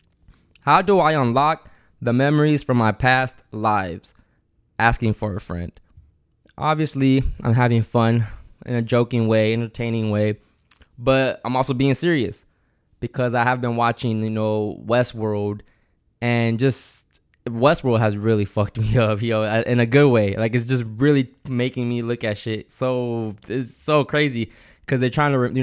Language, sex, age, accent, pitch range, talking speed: English, male, 20-39, American, 110-135 Hz, 160 wpm